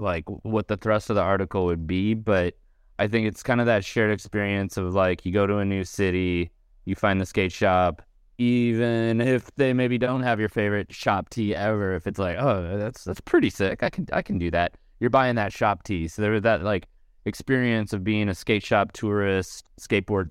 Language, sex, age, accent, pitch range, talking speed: English, male, 20-39, American, 95-110 Hz, 220 wpm